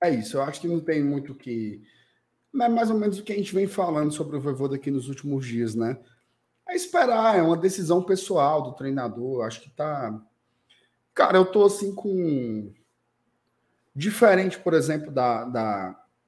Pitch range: 120-170 Hz